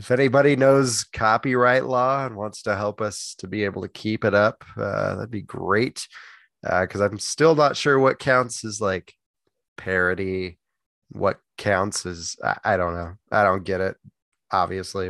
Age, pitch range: 20-39, 95-130 Hz